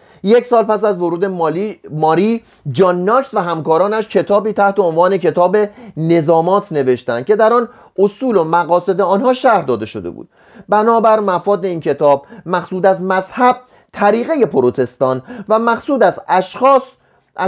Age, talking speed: 30-49, 140 wpm